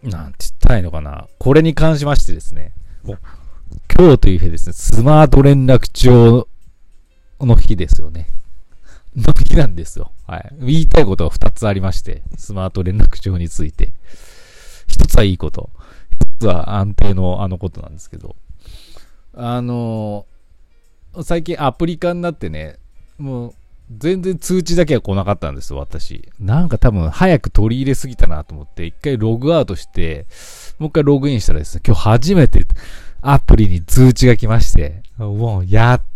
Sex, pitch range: male, 80-120 Hz